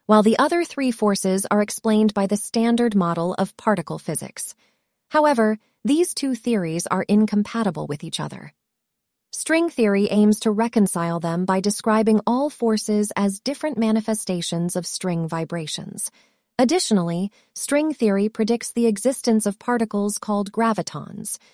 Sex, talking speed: female, 135 wpm